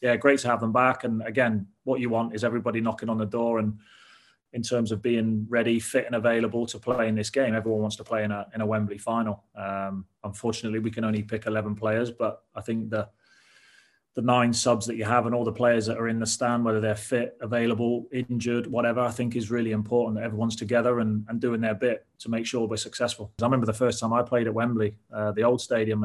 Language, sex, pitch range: English, male, 110-120 Hz